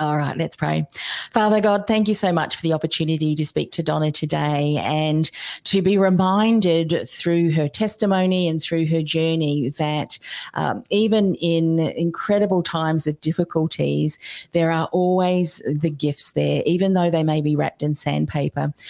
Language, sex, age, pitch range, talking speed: English, female, 40-59, 155-175 Hz, 160 wpm